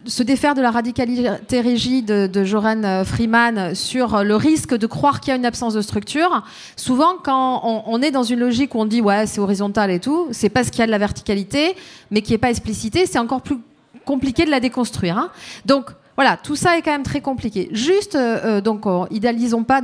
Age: 30-49